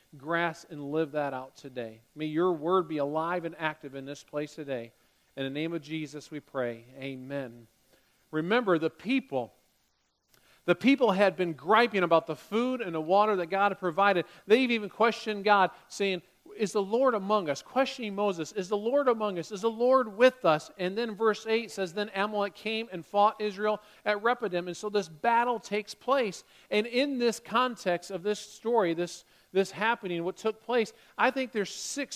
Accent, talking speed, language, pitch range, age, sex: American, 190 wpm, English, 160-230 Hz, 40-59, male